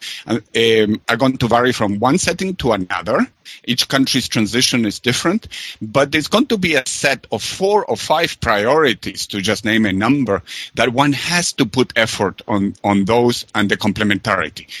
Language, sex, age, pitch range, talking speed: English, male, 50-69, 105-145 Hz, 180 wpm